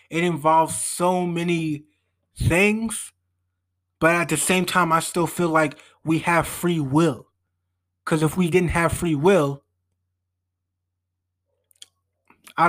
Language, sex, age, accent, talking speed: English, male, 20-39, American, 125 wpm